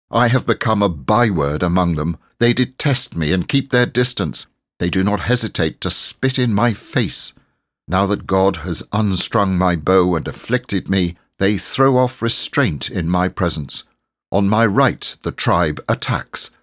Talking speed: 165 wpm